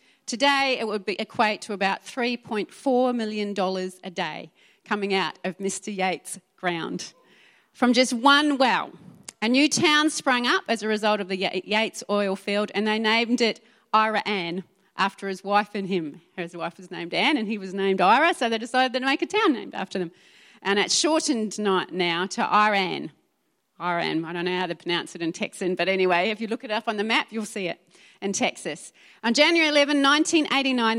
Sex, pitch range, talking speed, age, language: female, 190-245 Hz, 190 wpm, 30-49, English